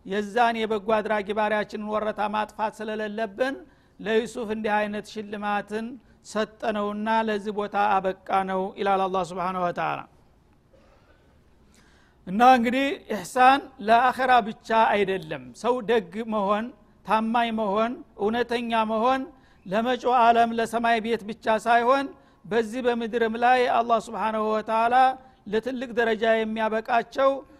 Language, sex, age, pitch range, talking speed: Amharic, male, 60-79, 205-235 Hz, 85 wpm